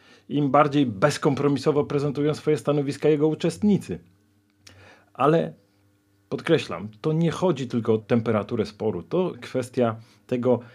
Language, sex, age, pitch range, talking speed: Polish, male, 40-59, 110-145 Hz, 110 wpm